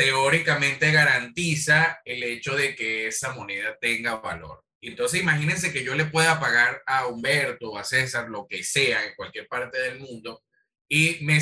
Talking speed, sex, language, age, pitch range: 165 wpm, male, Spanish, 20-39, 130-165 Hz